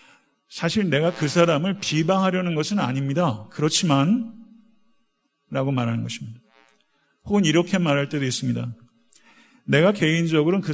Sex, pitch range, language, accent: male, 130-190 Hz, Korean, native